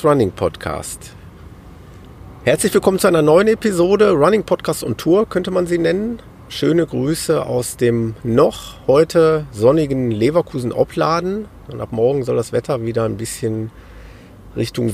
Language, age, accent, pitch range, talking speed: German, 40-59, German, 110-150 Hz, 135 wpm